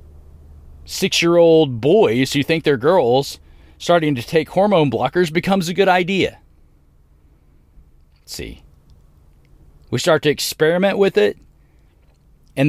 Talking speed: 115 wpm